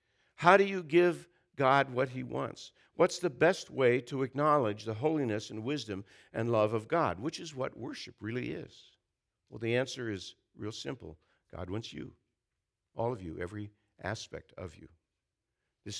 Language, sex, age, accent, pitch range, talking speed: English, male, 60-79, American, 100-135 Hz, 170 wpm